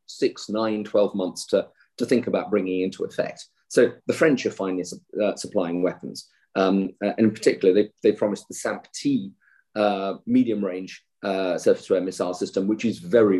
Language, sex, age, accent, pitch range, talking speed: English, male, 40-59, British, 100-140 Hz, 175 wpm